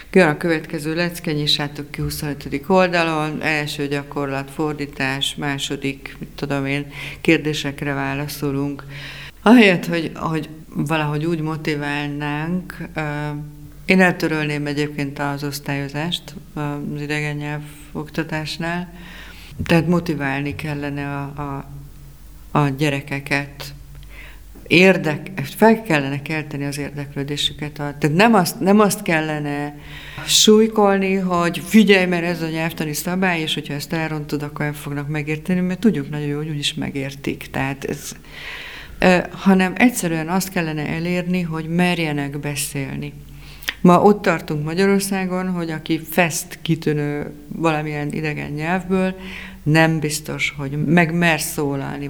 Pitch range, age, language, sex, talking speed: 145-175 Hz, 50-69, Hungarian, female, 115 wpm